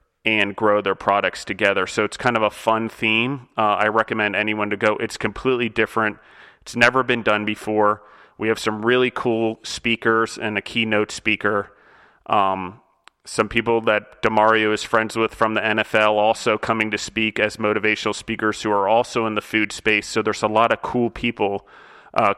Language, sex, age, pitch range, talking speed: English, male, 30-49, 105-115 Hz, 185 wpm